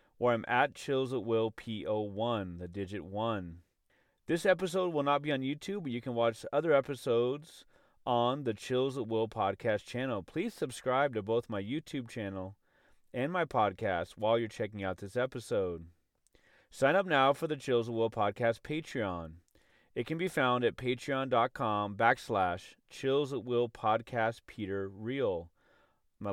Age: 30-49